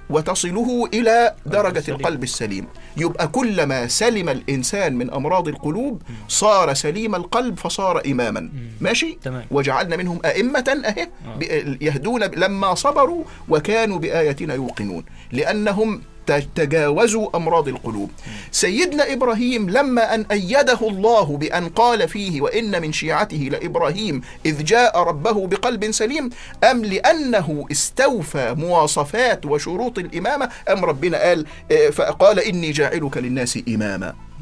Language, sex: Arabic, male